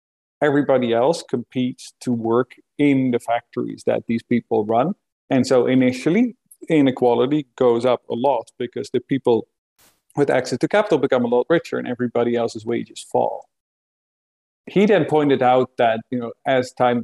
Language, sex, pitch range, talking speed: English, male, 120-140 Hz, 160 wpm